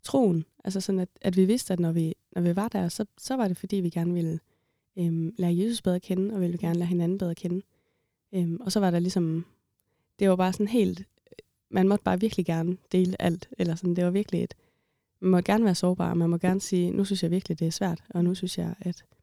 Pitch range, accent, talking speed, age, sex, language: 170-190 Hz, native, 250 wpm, 20-39, female, Danish